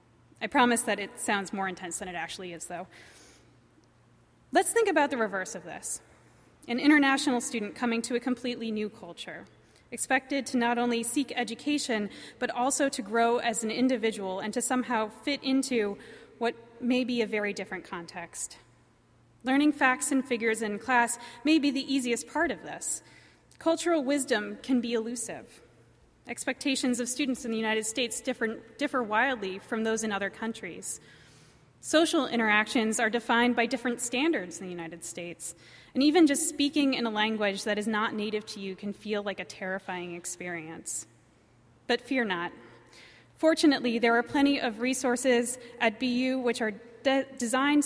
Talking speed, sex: 160 wpm, female